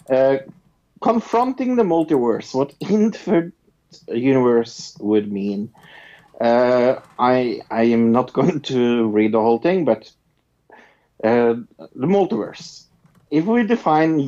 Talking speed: 115 wpm